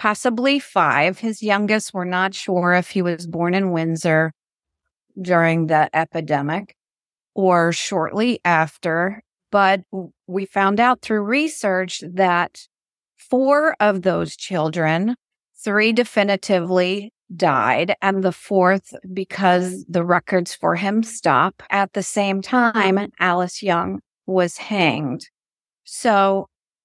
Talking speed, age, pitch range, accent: 115 wpm, 40-59, 180-220 Hz, American